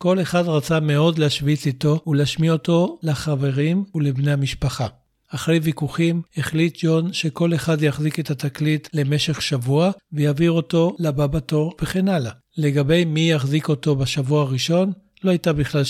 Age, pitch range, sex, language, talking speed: 60-79, 145-165 Hz, male, Hebrew, 135 wpm